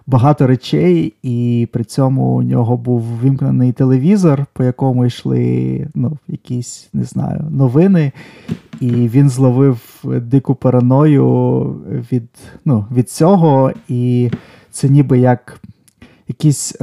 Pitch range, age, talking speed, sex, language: 120-140 Hz, 20-39, 105 wpm, male, Ukrainian